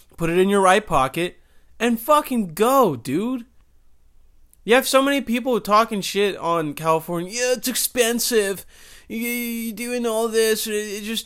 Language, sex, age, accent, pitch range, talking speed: English, male, 20-39, American, 125-185 Hz, 150 wpm